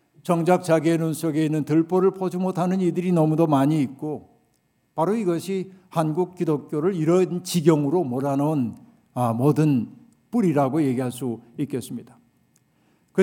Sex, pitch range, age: male, 150-185 Hz, 60-79